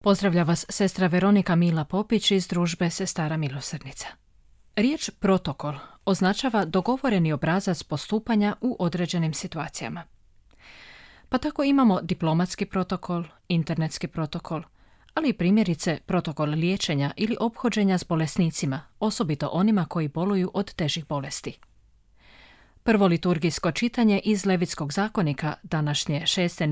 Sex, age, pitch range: female, 30-49, 160-210 Hz